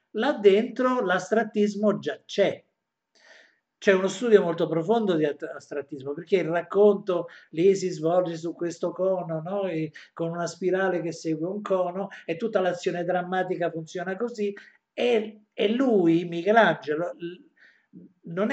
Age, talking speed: 50-69, 135 wpm